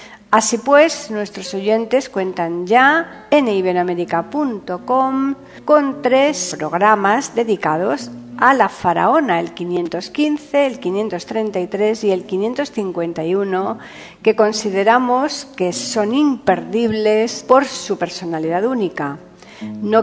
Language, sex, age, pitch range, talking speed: Spanish, female, 50-69, 180-230 Hz, 95 wpm